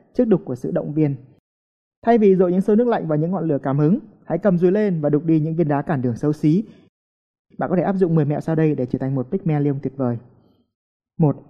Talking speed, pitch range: 260 wpm, 140-195 Hz